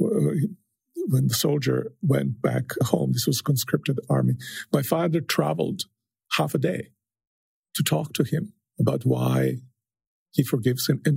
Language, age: English, 50-69